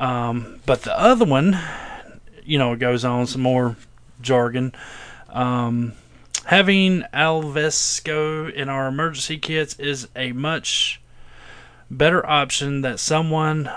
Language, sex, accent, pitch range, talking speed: English, male, American, 130-185 Hz, 120 wpm